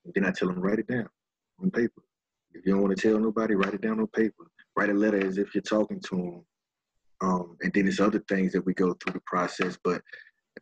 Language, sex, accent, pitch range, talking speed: English, male, American, 90-105 Hz, 250 wpm